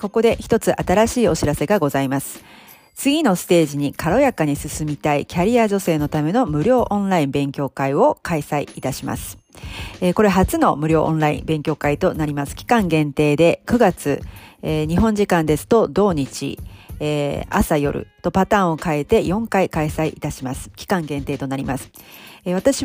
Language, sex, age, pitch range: Japanese, female, 40-59, 145-205 Hz